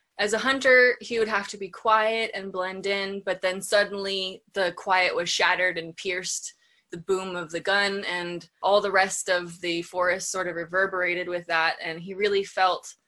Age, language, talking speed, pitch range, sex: 20-39, English, 195 wpm, 175-220 Hz, female